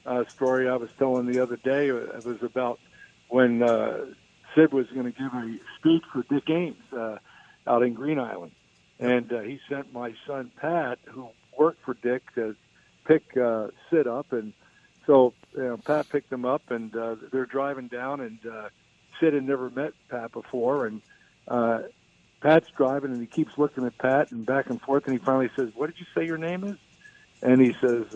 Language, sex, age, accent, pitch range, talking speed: English, male, 60-79, American, 125-140 Hz, 200 wpm